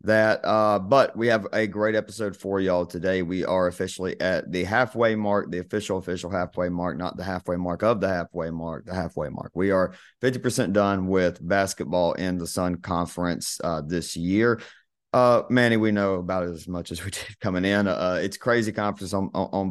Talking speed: 200 wpm